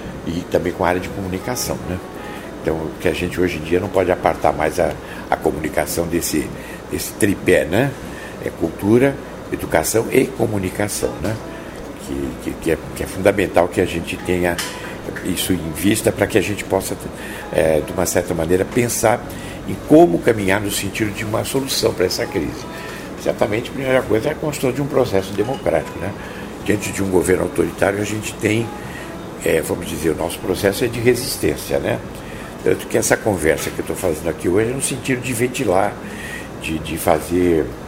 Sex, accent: male, Brazilian